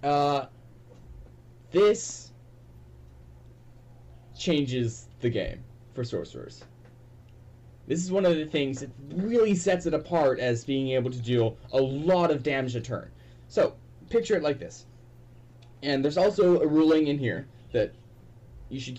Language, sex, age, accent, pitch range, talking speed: English, male, 10-29, American, 115-150 Hz, 140 wpm